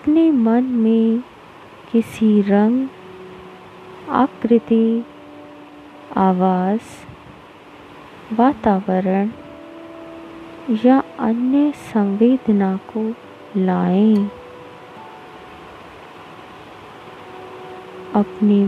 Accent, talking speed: native, 45 wpm